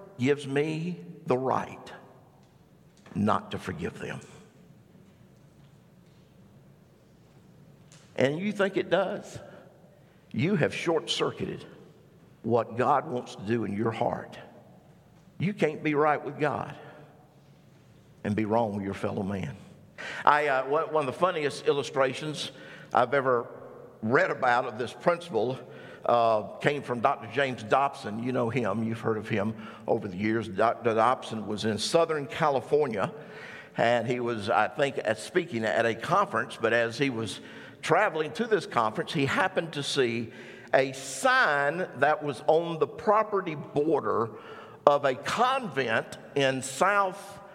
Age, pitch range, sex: 50-69, 120-175 Hz, male